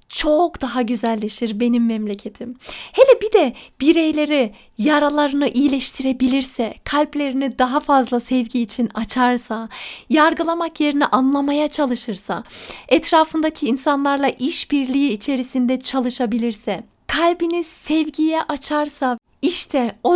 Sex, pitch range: female, 245-310 Hz